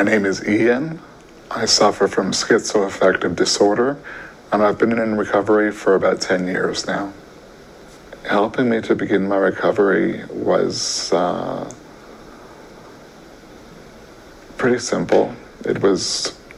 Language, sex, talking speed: English, male, 110 wpm